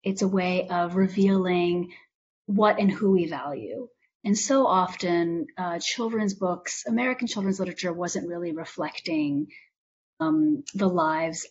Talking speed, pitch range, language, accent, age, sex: 130 wpm, 175-210 Hz, English, American, 30-49, female